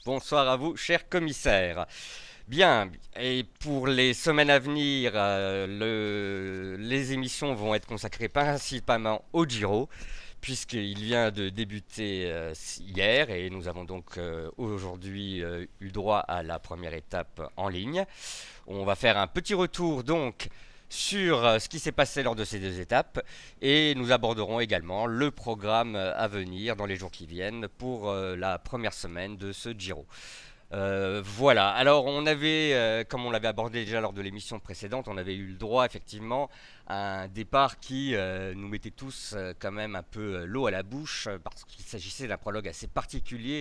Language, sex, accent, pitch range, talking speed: French, male, French, 95-130 Hz, 175 wpm